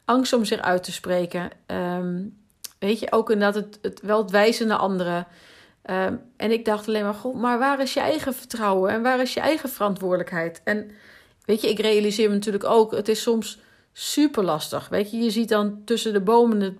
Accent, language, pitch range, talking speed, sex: Dutch, Dutch, 195-230 Hz, 210 wpm, female